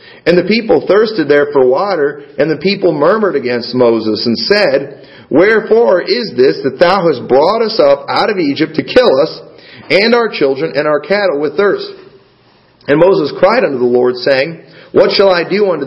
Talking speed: 190 wpm